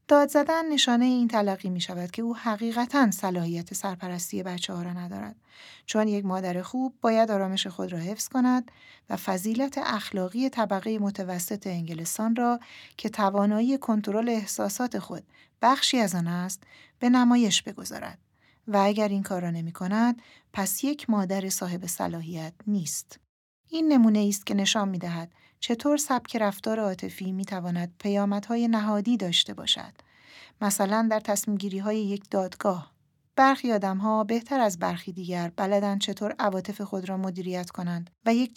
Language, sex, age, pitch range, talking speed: Persian, female, 40-59, 185-225 Hz, 155 wpm